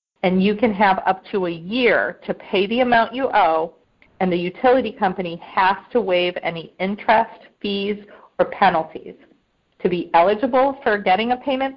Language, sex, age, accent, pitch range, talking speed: English, female, 40-59, American, 180-225 Hz, 170 wpm